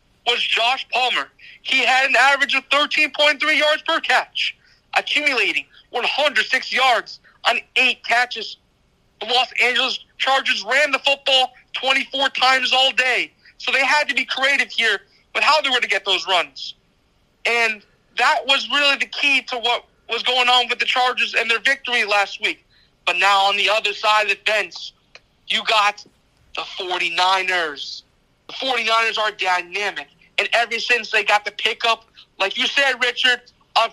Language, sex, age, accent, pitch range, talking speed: English, male, 40-59, American, 230-275 Hz, 165 wpm